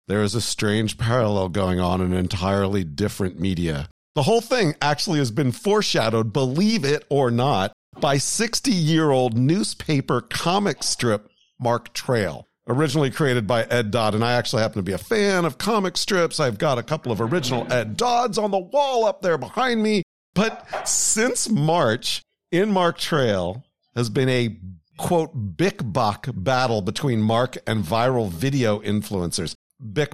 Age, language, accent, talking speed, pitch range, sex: 50-69, English, American, 160 wpm, 110-165 Hz, male